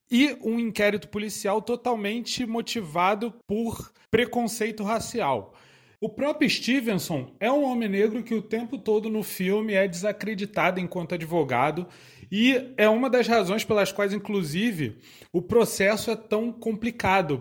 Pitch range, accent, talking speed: 180-230 Hz, Brazilian, 135 wpm